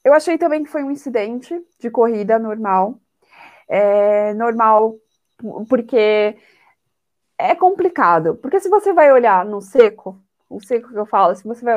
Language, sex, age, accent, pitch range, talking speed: Portuguese, female, 20-39, Brazilian, 195-260 Hz, 150 wpm